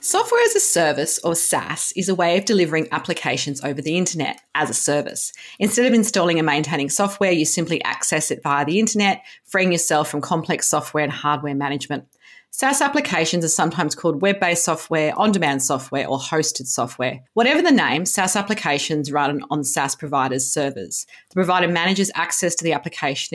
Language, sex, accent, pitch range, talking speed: English, female, Australian, 145-180 Hz, 175 wpm